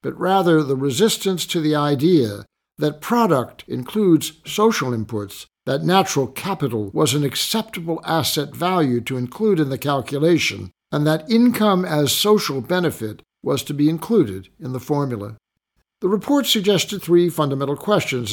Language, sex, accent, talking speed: English, male, American, 145 wpm